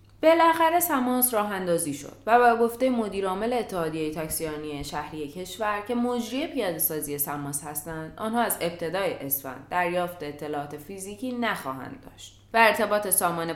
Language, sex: Persian, female